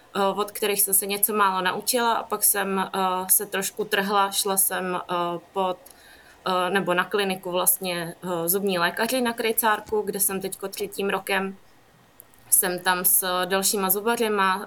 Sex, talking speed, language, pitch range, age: female, 140 wpm, Czech, 185-205 Hz, 20-39